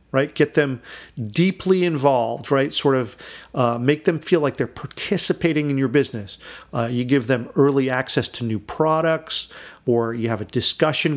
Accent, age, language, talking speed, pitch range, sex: American, 50-69, English, 170 wpm, 125-170 Hz, male